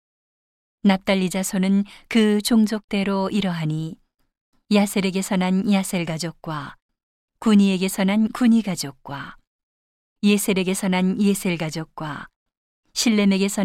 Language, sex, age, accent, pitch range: Korean, female, 40-59, native, 175-210 Hz